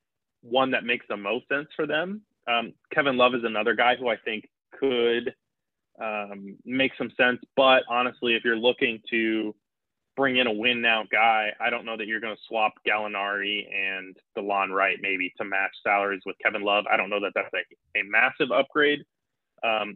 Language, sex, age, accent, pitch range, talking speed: English, male, 20-39, American, 105-125 Hz, 190 wpm